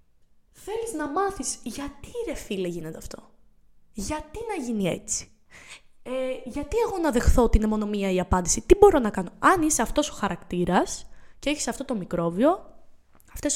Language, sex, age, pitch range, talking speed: Greek, female, 20-39, 215-285 Hz, 160 wpm